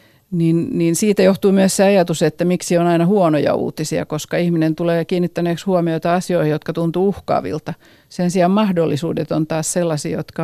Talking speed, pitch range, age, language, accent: 165 wpm, 165-195 Hz, 50-69, Finnish, native